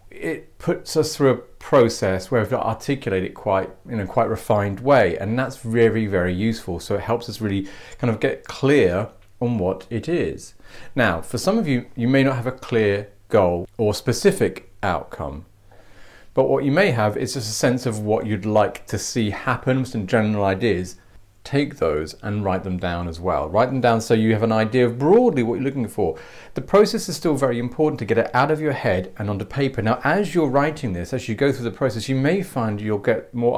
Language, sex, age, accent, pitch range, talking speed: English, male, 40-59, British, 100-125 Hz, 220 wpm